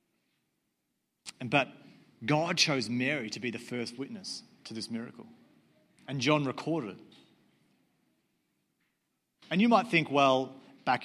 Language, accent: English, Australian